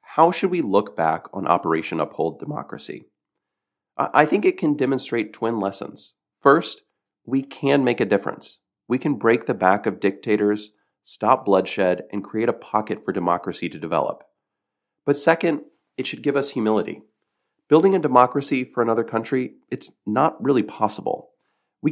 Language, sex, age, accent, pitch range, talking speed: English, male, 30-49, American, 95-140 Hz, 155 wpm